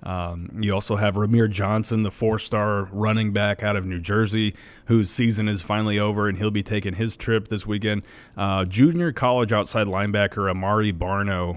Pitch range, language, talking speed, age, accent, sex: 95-110 Hz, English, 175 wpm, 30-49, American, male